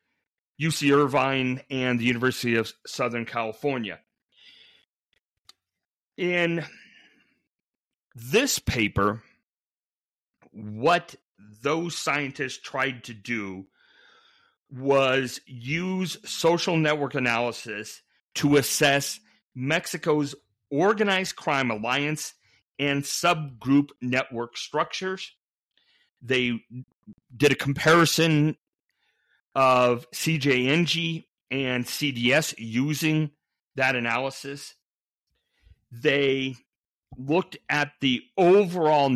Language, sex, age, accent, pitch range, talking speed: English, male, 40-59, American, 125-150 Hz, 75 wpm